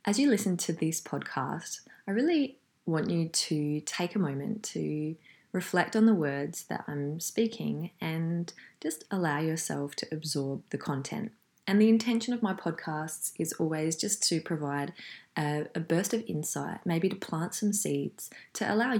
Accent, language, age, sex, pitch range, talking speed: Australian, English, 20-39, female, 150-200 Hz, 165 wpm